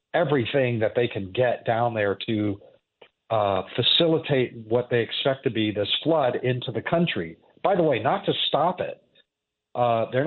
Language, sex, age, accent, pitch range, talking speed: English, male, 40-59, American, 120-135 Hz, 170 wpm